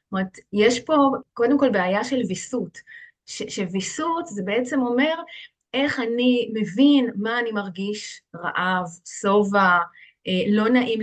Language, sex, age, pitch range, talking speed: Hebrew, female, 30-49, 200-255 Hz, 125 wpm